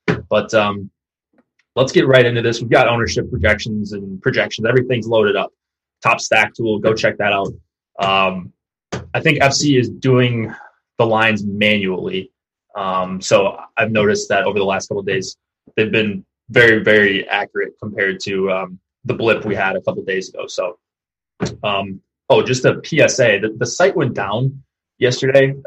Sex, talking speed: male, 170 wpm